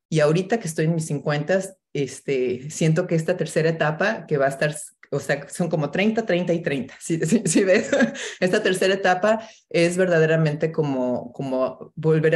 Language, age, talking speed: English, 30-49, 185 wpm